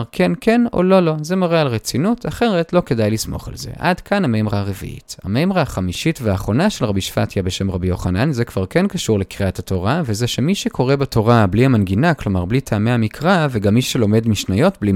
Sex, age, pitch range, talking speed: male, 30-49, 110-175 Hz, 195 wpm